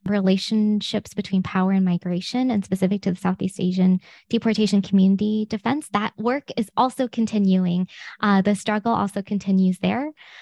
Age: 20-39